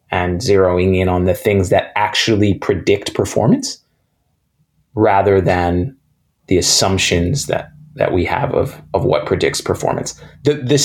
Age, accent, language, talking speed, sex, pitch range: 30-49, American, English, 140 wpm, male, 90-125 Hz